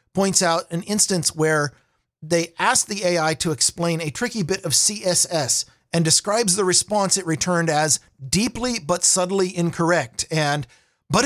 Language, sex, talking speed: English, male, 155 wpm